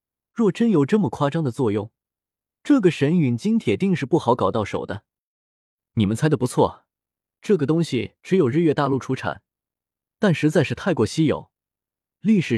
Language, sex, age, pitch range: Chinese, male, 20-39, 115-165 Hz